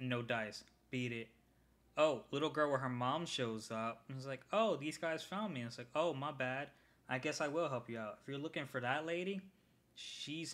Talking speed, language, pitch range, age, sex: 230 wpm, English, 115-155 Hz, 20-39, male